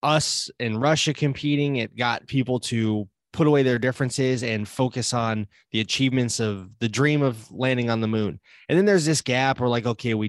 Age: 20-39